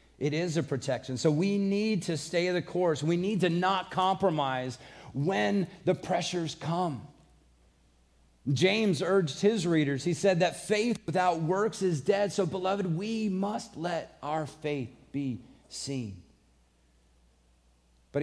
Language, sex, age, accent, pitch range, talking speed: English, male, 40-59, American, 130-170 Hz, 140 wpm